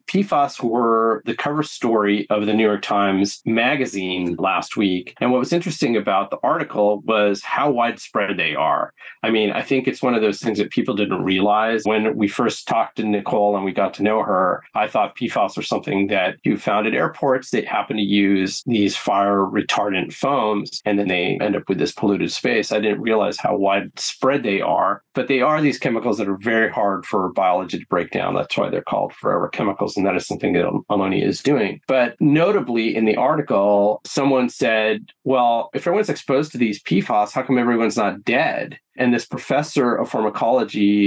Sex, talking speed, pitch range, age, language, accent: male, 200 wpm, 100-125 Hz, 40-59, English, American